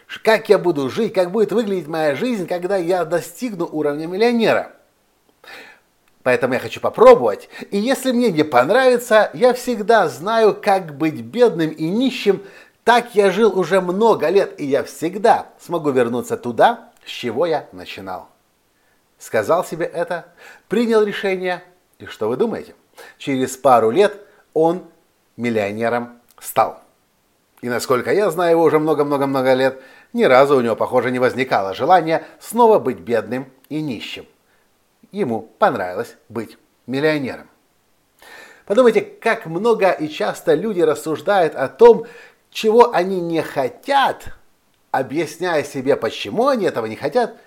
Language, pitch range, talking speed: Russian, 145-225 Hz, 135 wpm